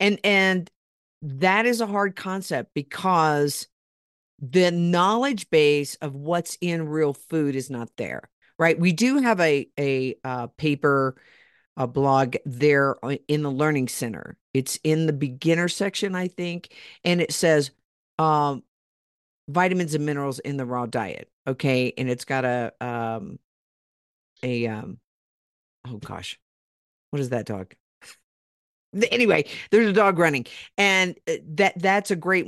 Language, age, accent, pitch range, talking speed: English, 50-69, American, 140-190 Hz, 140 wpm